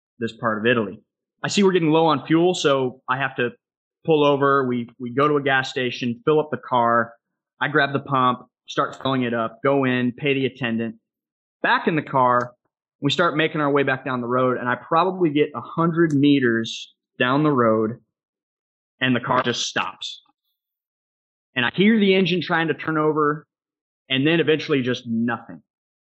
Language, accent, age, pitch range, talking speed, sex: English, American, 20-39, 125-165 Hz, 190 wpm, male